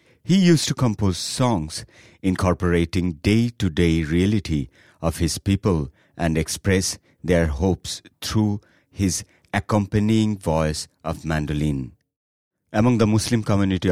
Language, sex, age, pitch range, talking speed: Bengali, male, 60-79, 85-105 Hz, 110 wpm